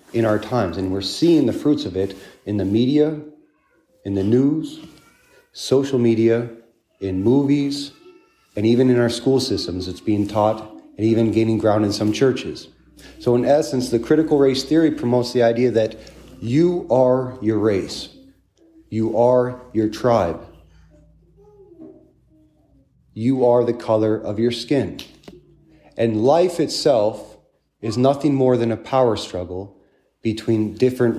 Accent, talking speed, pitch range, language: American, 140 wpm, 105-130 Hz, English